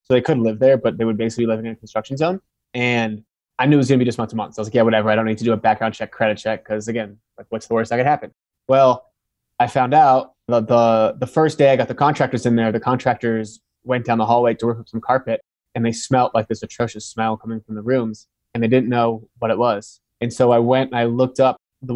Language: English